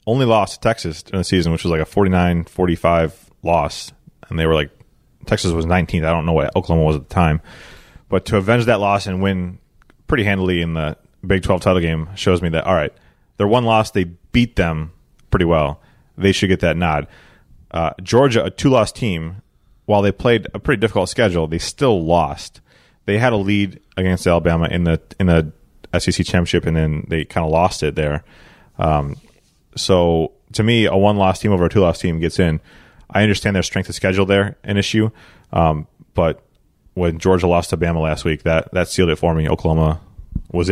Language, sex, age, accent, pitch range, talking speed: English, male, 30-49, American, 85-100 Hz, 200 wpm